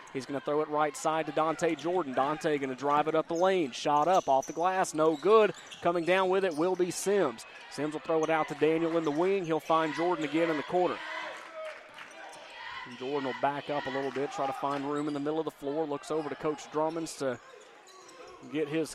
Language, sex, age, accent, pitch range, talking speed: English, male, 30-49, American, 145-175 Hz, 235 wpm